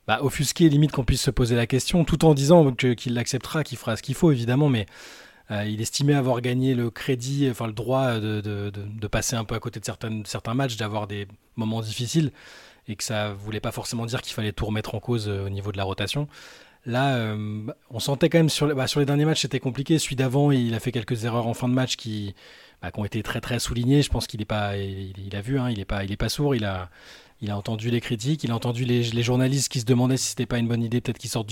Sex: male